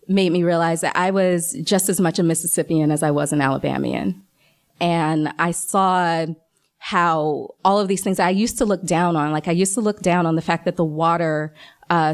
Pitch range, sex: 160-190 Hz, female